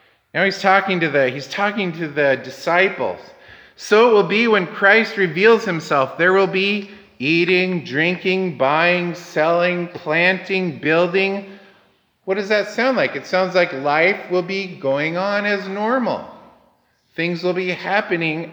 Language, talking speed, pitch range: English, 140 wpm, 165-205 Hz